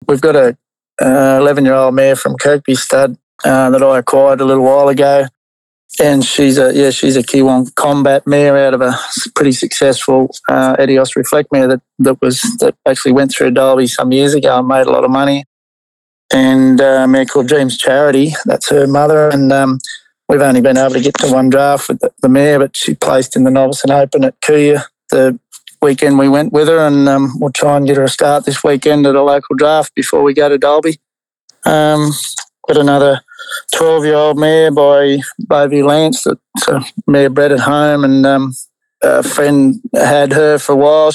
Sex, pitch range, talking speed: male, 135-145 Hz, 195 wpm